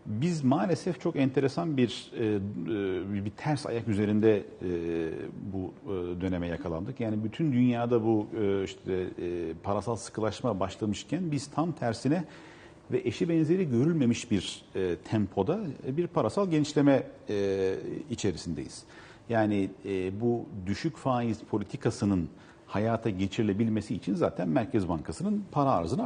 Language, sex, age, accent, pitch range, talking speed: Turkish, male, 50-69, native, 100-140 Hz, 105 wpm